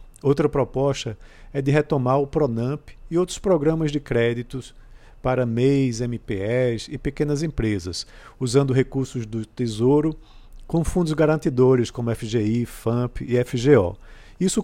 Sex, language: male, Portuguese